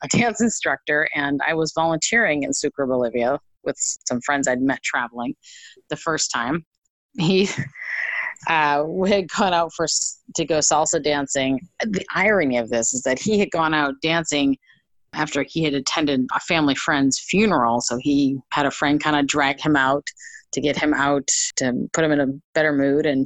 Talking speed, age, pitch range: 180 wpm, 30-49, 140-170 Hz